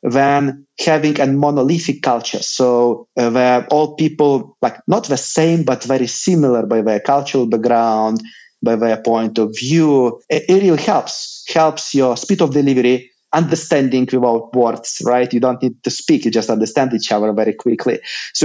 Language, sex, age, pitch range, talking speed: English, male, 30-49, 125-160 Hz, 170 wpm